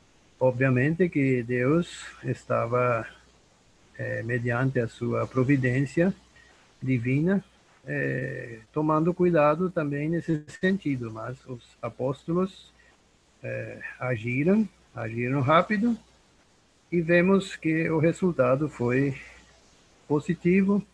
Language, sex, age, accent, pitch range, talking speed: Portuguese, male, 50-69, Brazilian, 125-170 Hz, 85 wpm